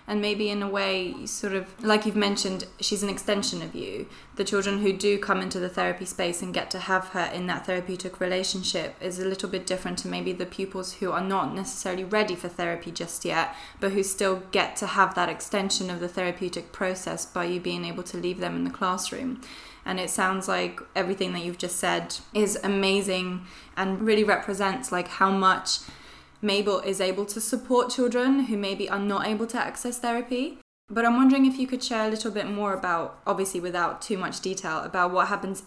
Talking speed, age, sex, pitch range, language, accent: 210 wpm, 20-39, female, 175-205 Hz, English, British